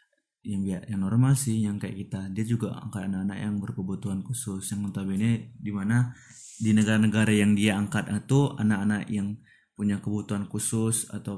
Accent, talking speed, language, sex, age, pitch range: native, 170 wpm, Indonesian, male, 20-39, 105-125 Hz